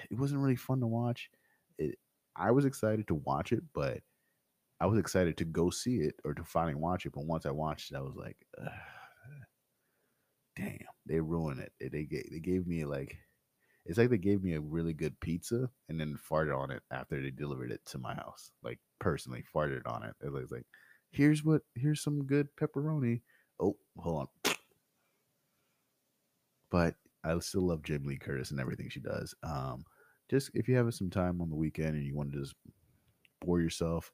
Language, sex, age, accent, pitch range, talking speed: English, male, 30-49, American, 75-100 Hz, 195 wpm